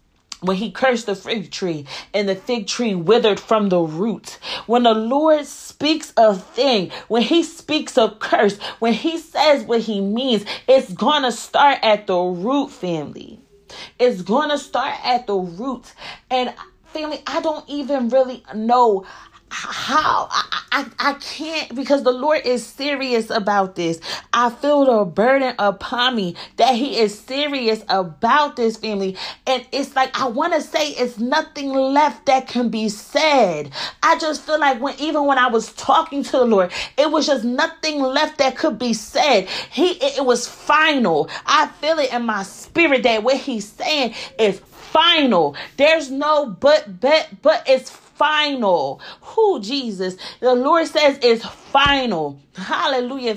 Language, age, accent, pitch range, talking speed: English, 30-49, American, 220-285 Hz, 165 wpm